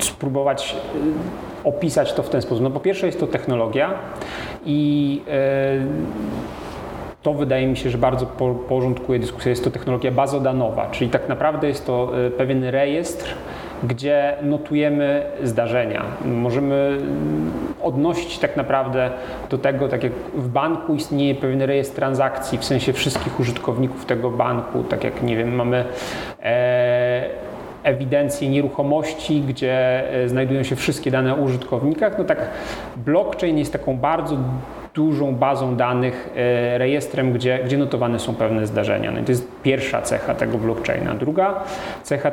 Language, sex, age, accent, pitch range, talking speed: Polish, male, 40-59, native, 125-145 Hz, 130 wpm